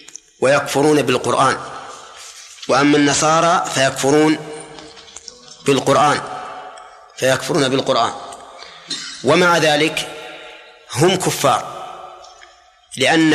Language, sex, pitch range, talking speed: Arabic, male, 135-150 Hz, 60 wpm